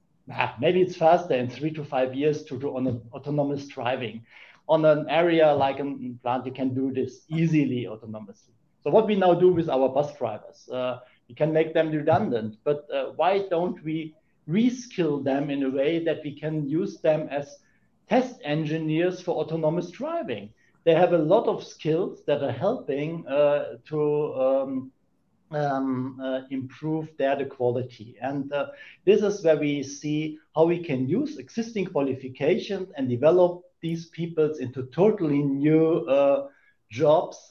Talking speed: 165 wpm